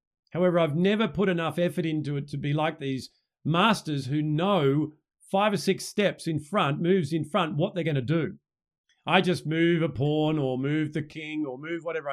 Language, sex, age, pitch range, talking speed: English, male, 50-69, 135-185 Hz, 205 wpm